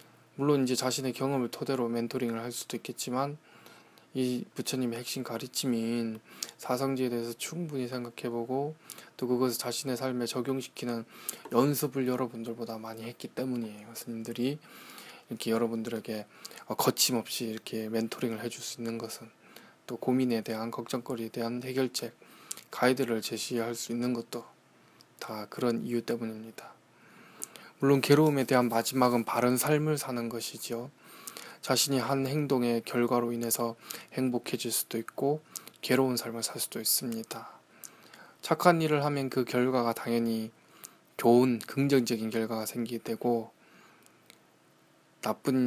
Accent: native